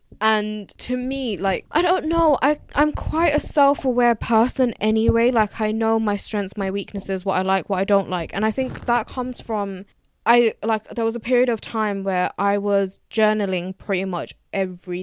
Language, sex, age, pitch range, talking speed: English, female, 20-39, 195-225 Hz, 195 wpm